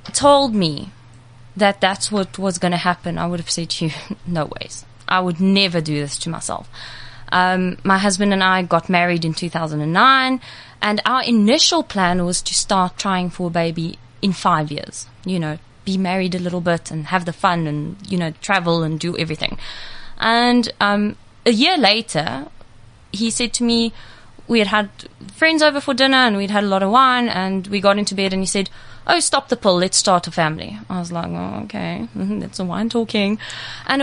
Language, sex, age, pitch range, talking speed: English, female, 20-39, 175-240 Hz, 200 wpm